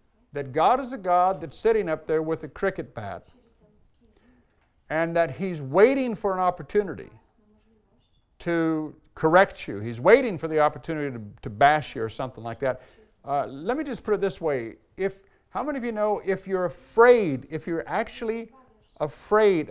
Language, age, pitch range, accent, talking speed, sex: English, 50-69, 140-210 Hz, American, 175 wpm, male